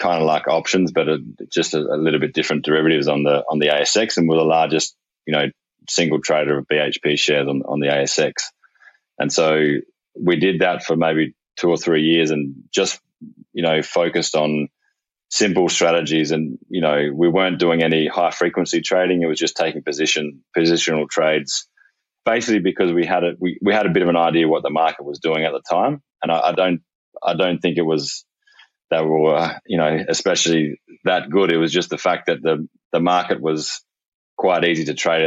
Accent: Australian